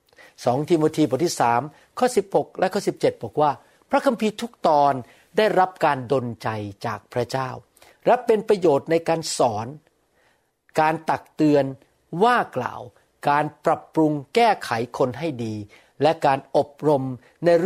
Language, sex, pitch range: Thai, male, 130-195 Hz